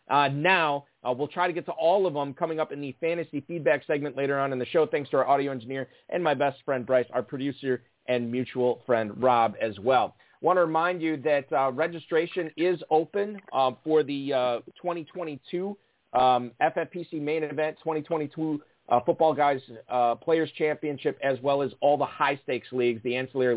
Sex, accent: male, American